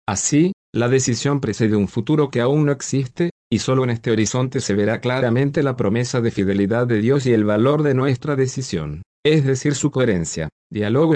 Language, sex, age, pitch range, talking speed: Spanish, male, 40-59, 110-140 Hz, 190 wpm